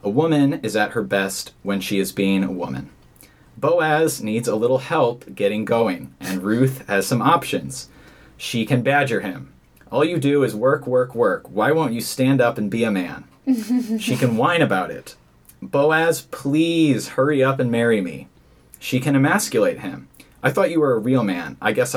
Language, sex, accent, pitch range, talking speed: English, male, American, 105-145 Hz, 190 wpm